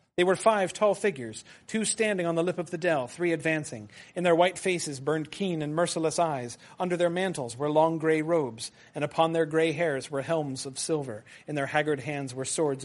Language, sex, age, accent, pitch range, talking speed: English, male, 30-49, American, 145-185 Hz, 215 wpm